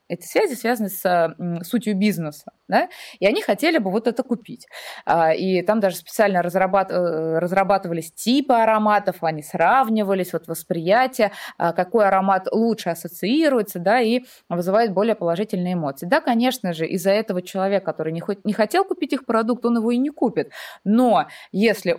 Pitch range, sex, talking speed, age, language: 180-245 Hz, female, 145 wpm, 20-39, Russian